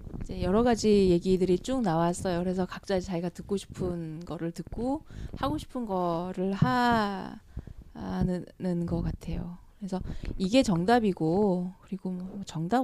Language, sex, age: Korean, female, 20-39